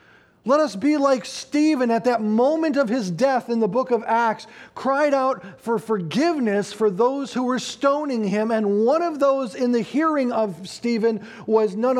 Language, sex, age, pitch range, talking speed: English, male, 40-59, 135-220 Hz, 185 wpm